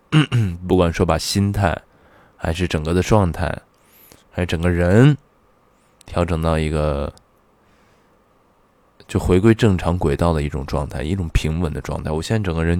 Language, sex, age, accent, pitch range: Chinese, male, 20-39, native, 80-95 Hz